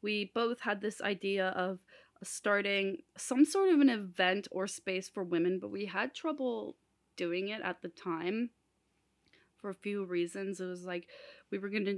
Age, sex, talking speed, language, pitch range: 20-39, female, 180 wpm, English, 185-230 Hz